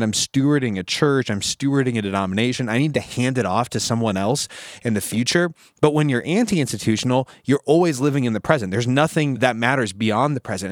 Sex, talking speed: male, 205 wpm